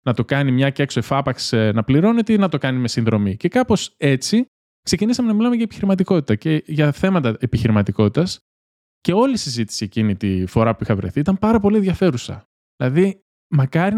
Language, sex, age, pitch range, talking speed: Greek, male, 20-39, 110-180 Hz, 185 wpm